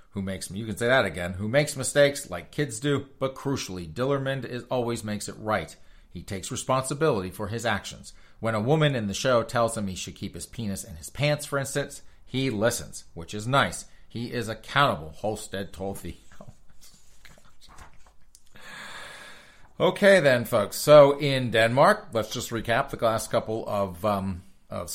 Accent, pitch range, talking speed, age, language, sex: American, 95-130 Hz, 170 wpm, 40-59, English, male